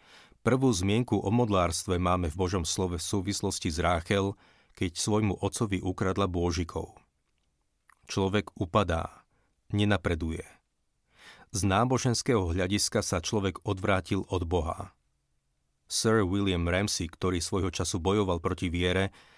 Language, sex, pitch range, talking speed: Slovak, male, 90-105 Hz, 115 wpm